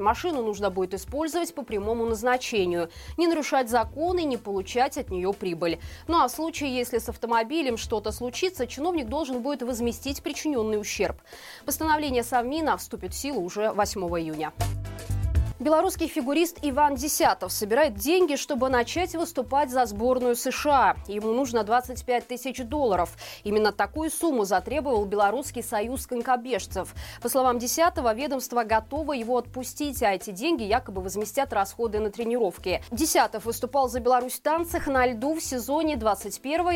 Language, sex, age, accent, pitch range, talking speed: Russian, female, 20-39, native, 215-280 Hz, 140 wpm